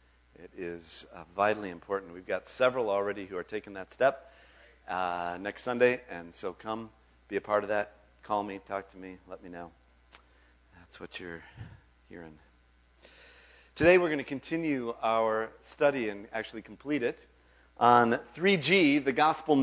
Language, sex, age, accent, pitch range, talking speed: English, male, 40-59, American, 80-135 Hz, 155 wpm